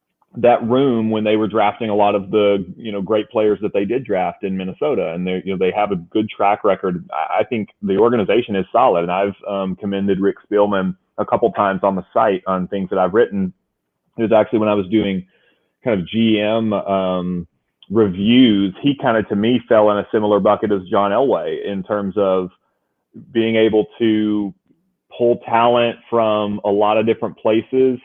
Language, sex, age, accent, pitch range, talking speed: English, male, 30-49, American, 100-110 Hz, 200 wpm